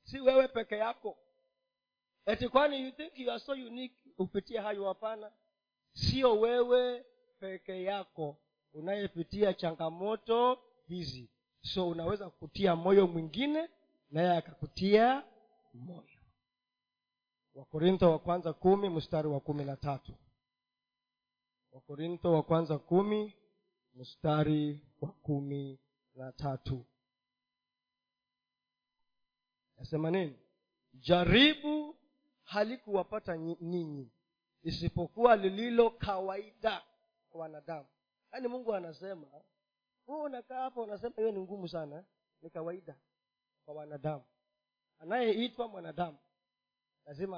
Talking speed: 85 wpm